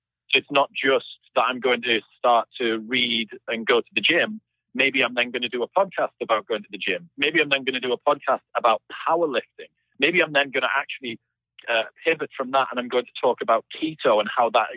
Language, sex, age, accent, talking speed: English, male, 40-59, British, 235 wpm